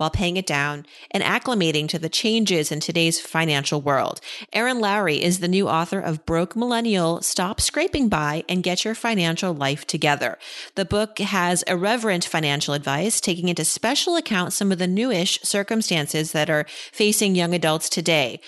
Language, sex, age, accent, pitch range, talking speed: English, female, 40-59, American, 160-210 Hz, 170 wpm